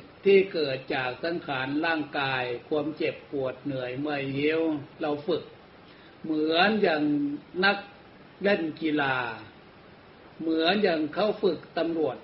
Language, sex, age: Thai, male, 60-79